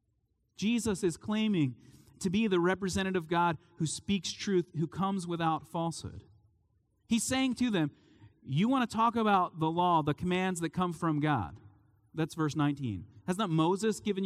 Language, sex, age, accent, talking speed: English, male, 30-49, American, 170 wpm